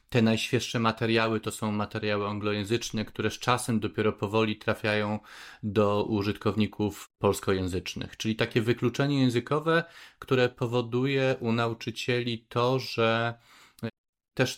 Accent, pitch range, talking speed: native, 105-120 Hz, 110 wpm